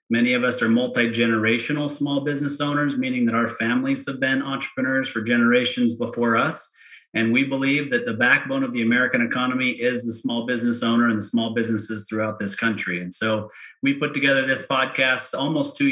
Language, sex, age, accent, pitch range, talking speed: English, male, 30-49, American, 115-130 Hz, 190 wpm